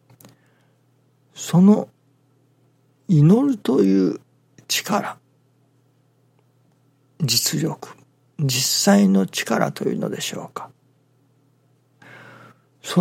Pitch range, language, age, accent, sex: 130-150 Hz, Japanese, 60-79, native, male